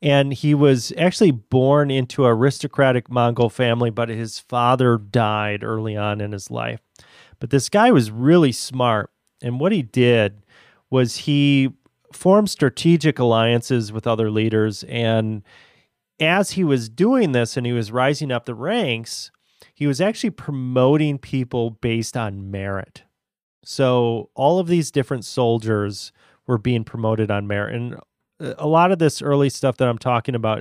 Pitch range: 115-150 Hz